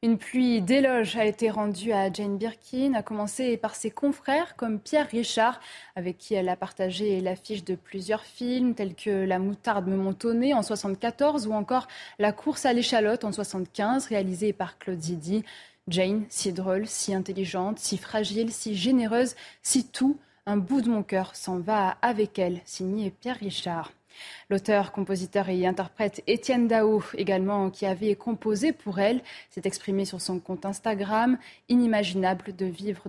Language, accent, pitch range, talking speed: French, French, 195-235 Hz, 165 wpm